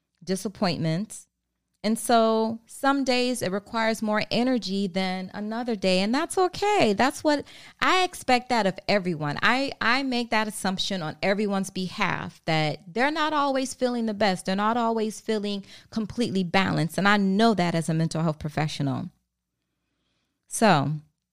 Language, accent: English, American